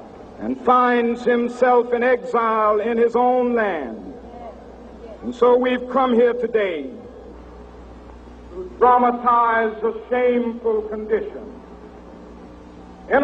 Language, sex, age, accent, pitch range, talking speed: English, male, 60-79, American, 215-250 Hz, 95 wpm